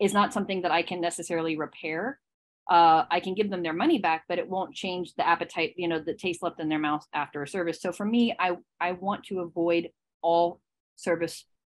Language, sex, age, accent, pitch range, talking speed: English, female, 30-49, American, 170-220 Hz, 220 wpm